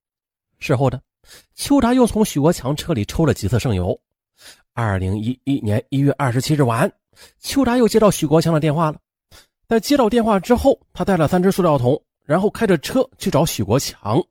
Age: 30-49